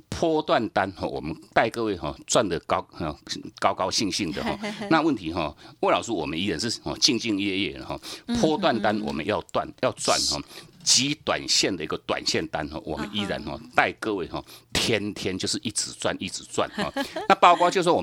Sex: male